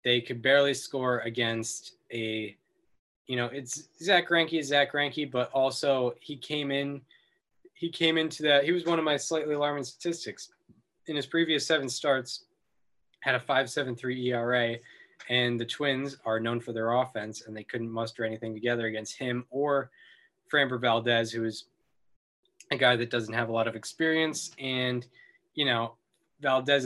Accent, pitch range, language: American, 115-145 Hz, English